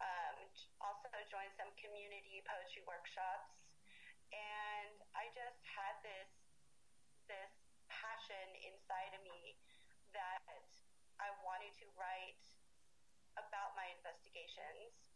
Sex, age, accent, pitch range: female, 30-49, American, 185-240 Hz